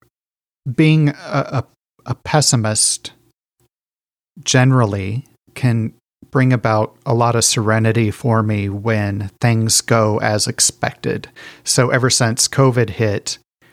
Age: 40-59